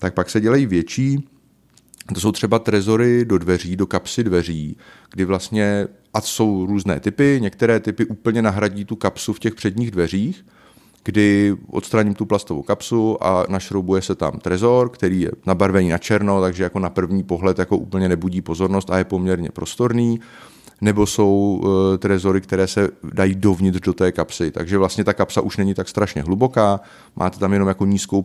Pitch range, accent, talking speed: 90-105 Hz, native, 175 wpm